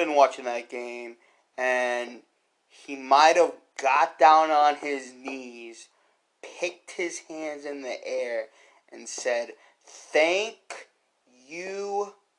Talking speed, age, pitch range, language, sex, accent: 110 wpm, 20-39, 130-175 Hz, English, male, American